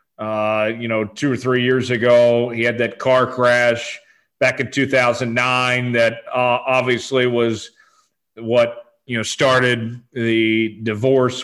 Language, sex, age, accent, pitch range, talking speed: English, male, 40-59, American, 120-170 Hz, 135 wpm